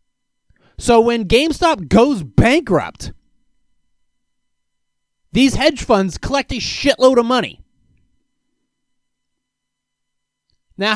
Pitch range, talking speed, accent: 165-255 Hz, 75 wpm, American